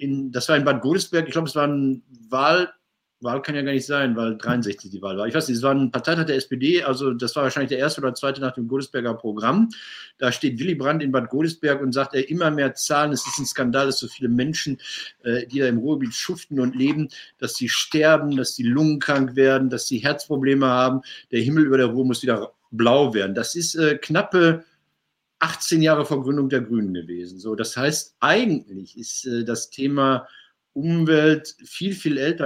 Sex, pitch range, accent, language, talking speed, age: male, 130-155 Hz, German, German, 215 wpm, 50-69